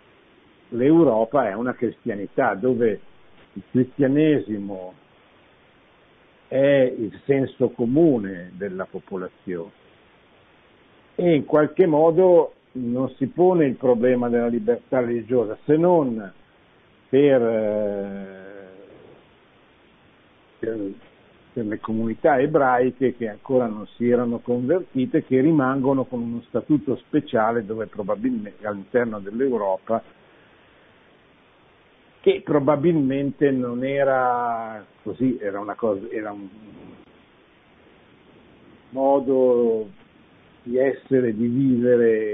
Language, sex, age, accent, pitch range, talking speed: Italian, male, 50-69, native, 105-135 Hz, 95 wpm